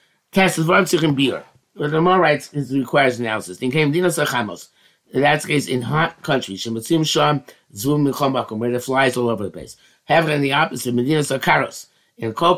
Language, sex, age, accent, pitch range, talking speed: English, male, 50-69, American, 125-155 Hz, 155 wpm